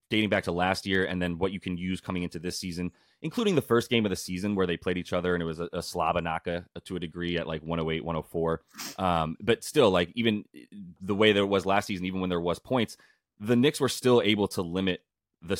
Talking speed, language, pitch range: 245 wpm, English, 85-105 Hz